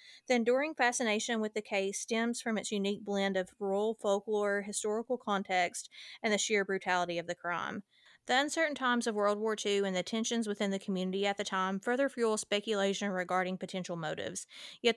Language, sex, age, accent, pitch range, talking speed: English, female, 30-49, American, 190-225 Hz, 185 wpm